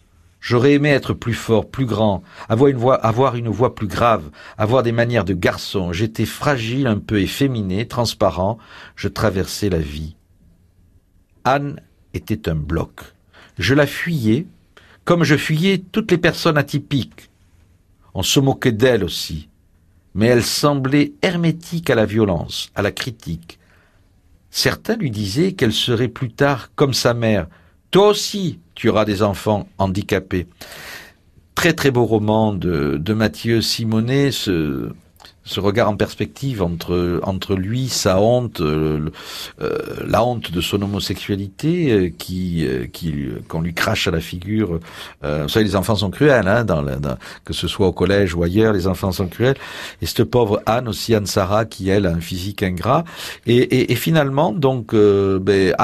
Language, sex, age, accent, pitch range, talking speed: French, male, 60-79, French, 90-125 Hz, 160 wpm